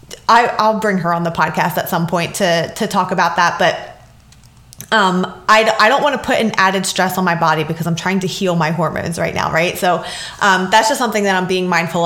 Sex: female